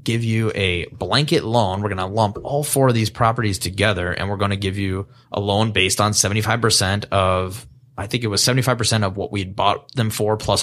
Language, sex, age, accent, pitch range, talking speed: English, male, 20-39, American, 95-120 Hz, 230 wpm